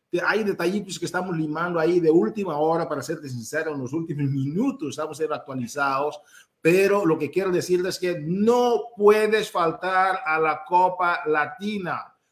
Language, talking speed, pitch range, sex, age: Spanish, 160 wpm, 145-190 Hz, male, 50-69